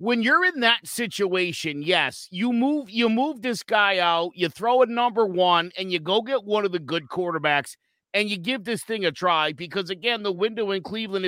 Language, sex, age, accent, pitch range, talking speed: English, male, 50-69, American, 175-245 Hz, 215 wpm